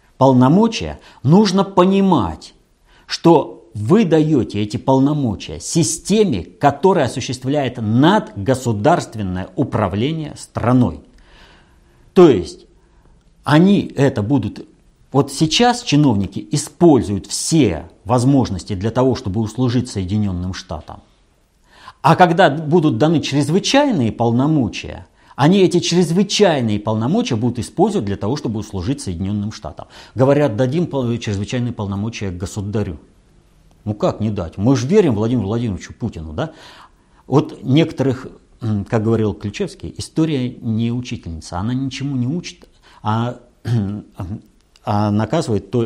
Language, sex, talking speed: Russian, male, 105 wpm